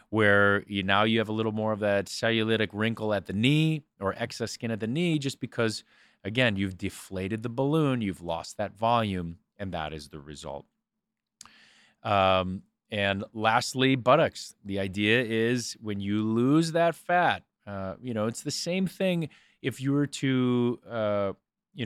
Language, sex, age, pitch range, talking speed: English, male, 30-49, 100-125 Hz, 170 wpm